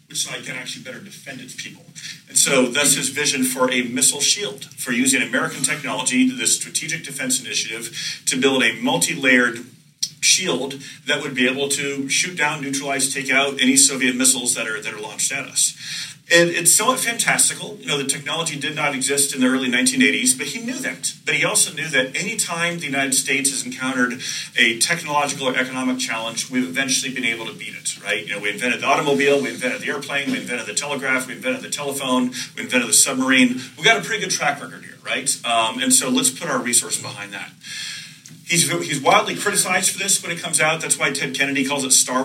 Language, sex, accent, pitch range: English, male, American, 130-180 Hz